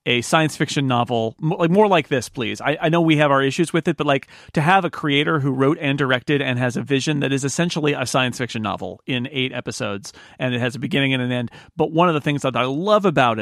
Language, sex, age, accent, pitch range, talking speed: English, male, 40-59, American, 130-185 Hz, 260 wpm